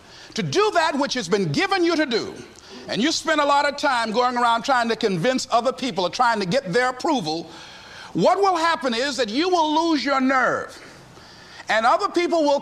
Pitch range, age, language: 220-310 Hz, 50-69, English